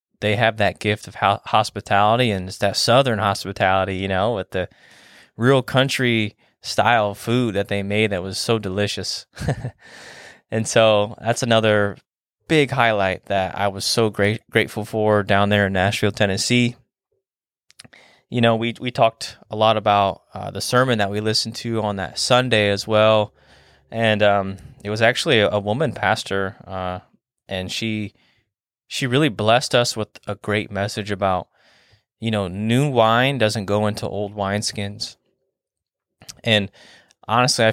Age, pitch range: 20-39, 100-115 Hz